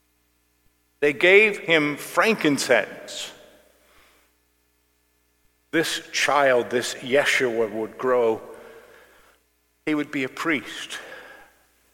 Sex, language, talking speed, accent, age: male, English, 75 wpm, American, 50-69